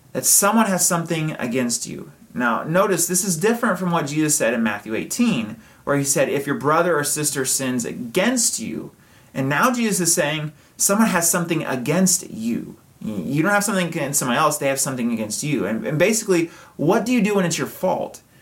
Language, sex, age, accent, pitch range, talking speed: English, male, 30-49, American, 145-215 Hz, 200 wpm